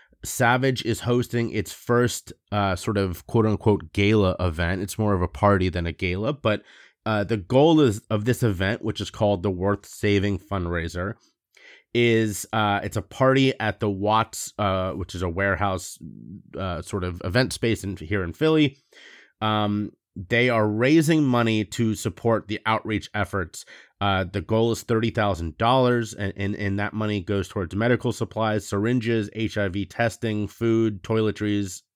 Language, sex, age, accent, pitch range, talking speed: English, male, 30-49, American, 95-115 Hz, 160 wpm